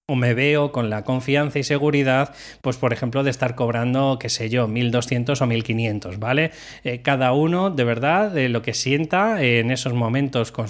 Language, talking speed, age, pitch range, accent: Spanish, 195 wpm, 20-39, 120-140 Hz, Spanish